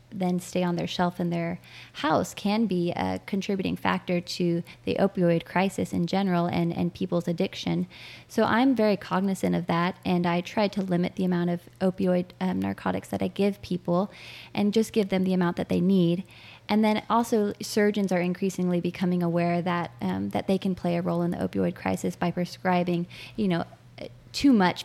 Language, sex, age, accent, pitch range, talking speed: English, female, 20-39, American, 170-185 Hz, 190 wpm